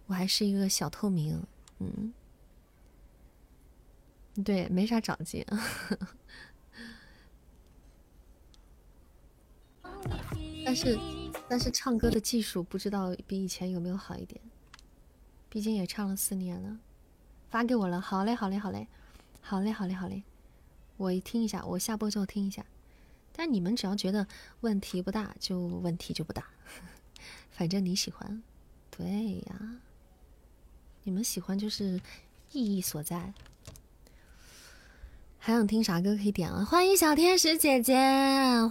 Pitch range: 180-235 Hz